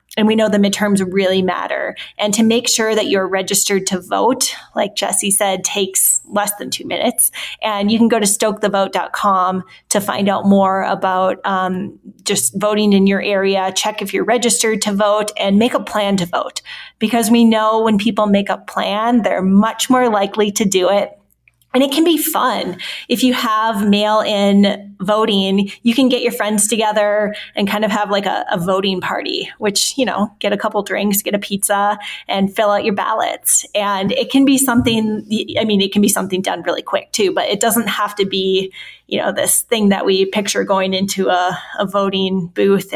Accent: American